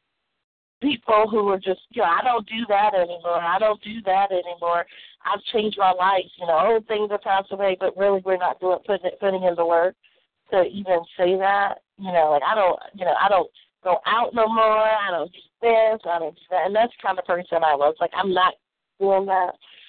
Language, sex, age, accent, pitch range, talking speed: English, female, 40-59, American, 180-215 Hz, 230 wpm